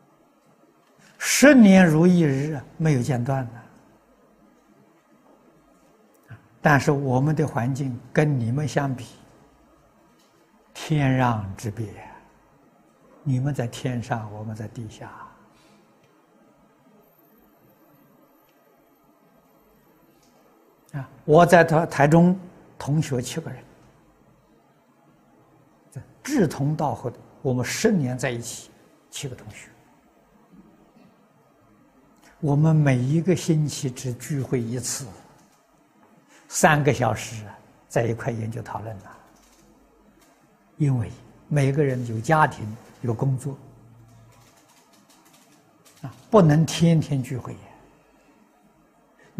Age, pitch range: 60-79, 120-160 Hz